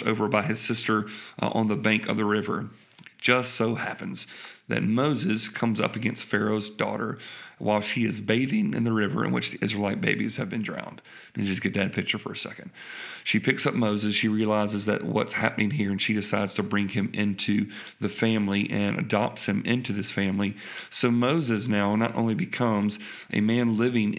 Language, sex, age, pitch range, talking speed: English, male, 40-59, 105-120 Hz, 200 wpm